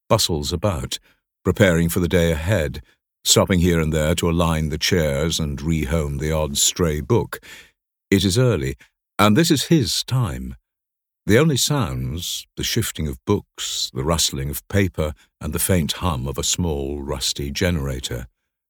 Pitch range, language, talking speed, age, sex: 75-105 Hz, English, 155 wpm, 60-79, male